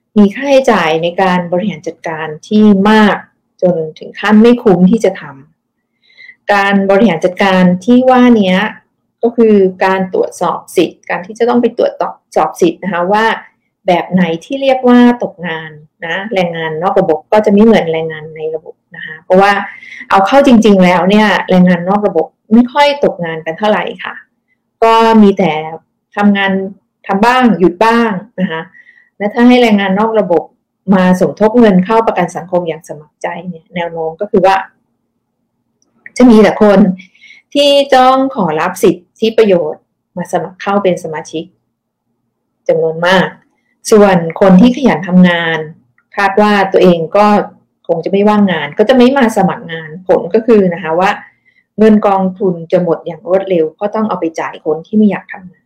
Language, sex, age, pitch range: English, female, 20-39, 175-220 Hz